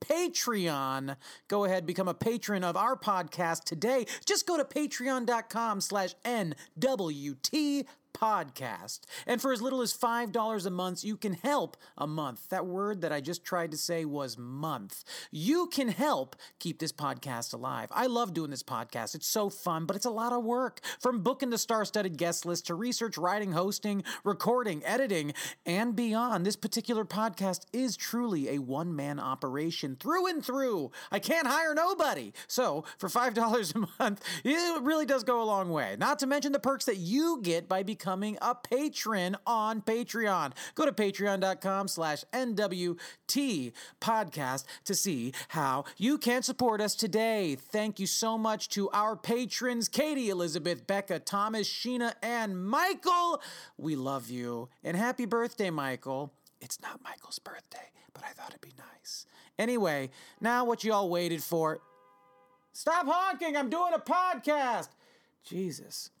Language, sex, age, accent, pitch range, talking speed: English, male, 40-59, American, 170-245 Hz, 160 wpm